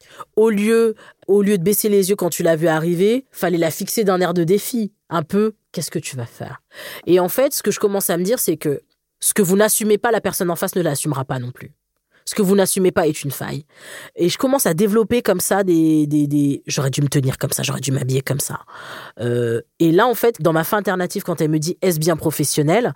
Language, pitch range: French, 155-215 Hz